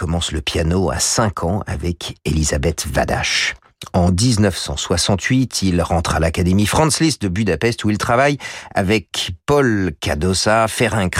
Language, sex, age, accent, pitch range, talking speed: French, male, 50-69, French, 85-120 Hz, 140 wpm